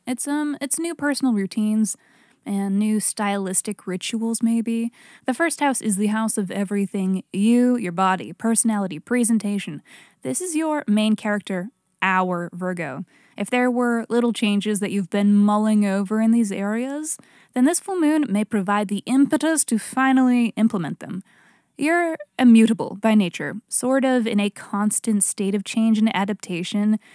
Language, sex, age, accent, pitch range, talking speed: English, female, 20-39, American, 200-245 Hz, 155 wpm